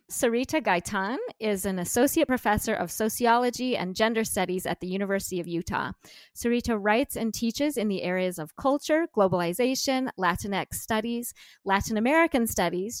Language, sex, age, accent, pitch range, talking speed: English, female, 20-39, American, 190-245 Hz, 145 wpm